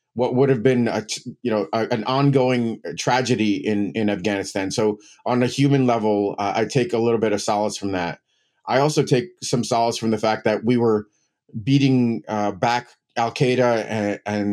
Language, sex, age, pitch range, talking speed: English, male, 30-49, 105-125 Hz, 185 wpm